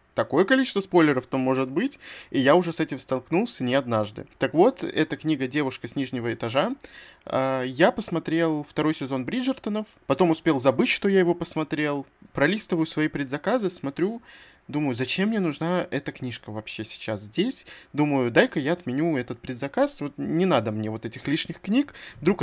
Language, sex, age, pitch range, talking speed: Russian, male, 20-39, 130-175 Hz, 170 wpm